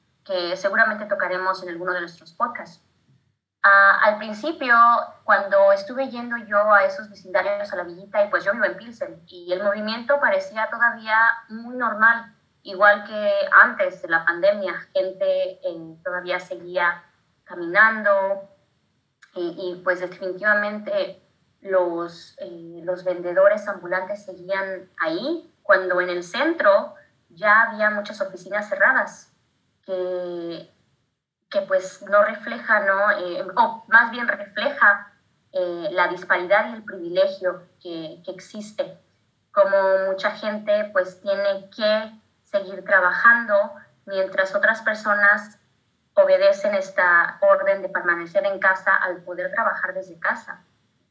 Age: 20-39